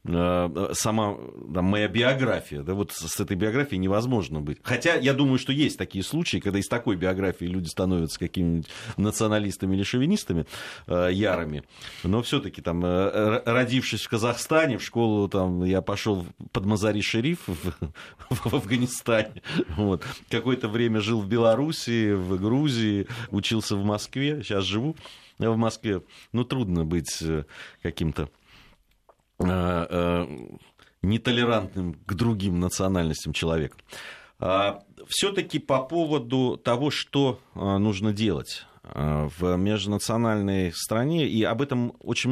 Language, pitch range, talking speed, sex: Russian, 85-115 Hz, 120 wpm, male